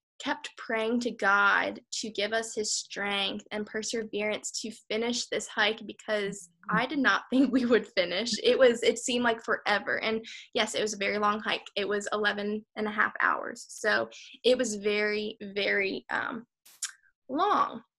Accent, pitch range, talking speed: American, 210-240 Hz, 170 wpm